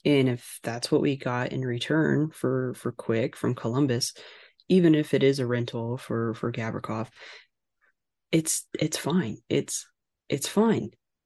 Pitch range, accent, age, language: 120-150 Hz, American, 20-39, English